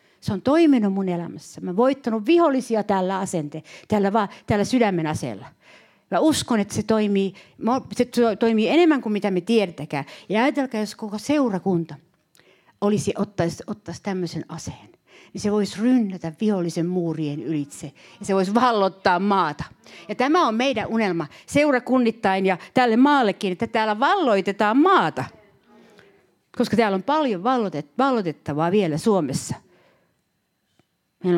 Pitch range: 195-280 Hz